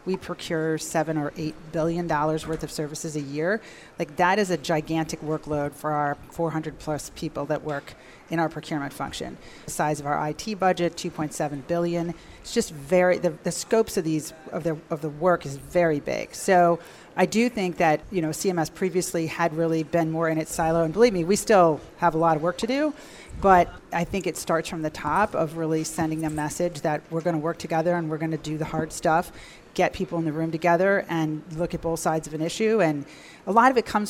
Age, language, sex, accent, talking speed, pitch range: 40-59, English, female, American, 225 wpm, 155-180 Hz